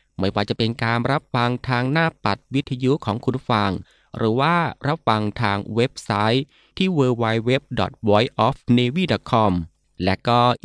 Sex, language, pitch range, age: male, Thai, 105-135 Hz, 20-39